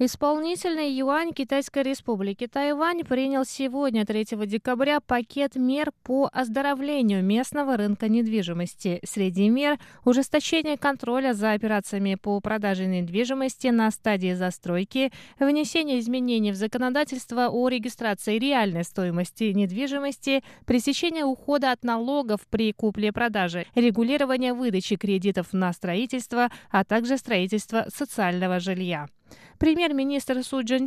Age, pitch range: 20-39, 205-265 Hz